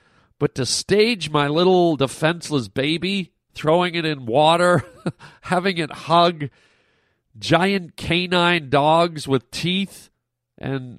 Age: 40-59